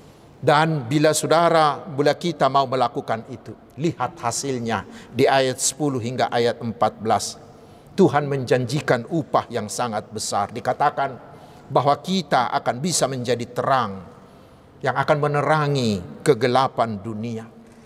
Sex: male